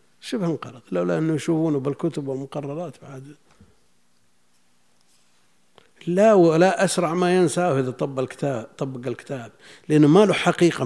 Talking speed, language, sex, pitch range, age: 110 wpm, Arabic, male, 95-155 Hz, 60-79